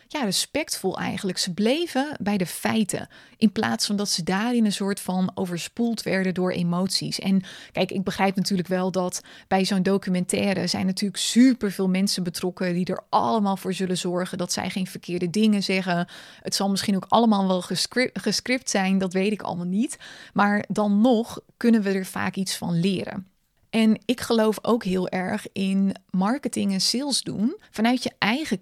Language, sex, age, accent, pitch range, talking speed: Dutch, female, 20-39, Dutch, 190-230 Hz, 180 wpm